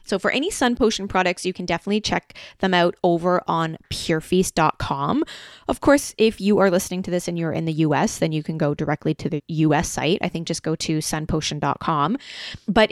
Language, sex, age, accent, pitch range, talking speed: English, female, 20-39, American, 165-195 Hz, 205 wpm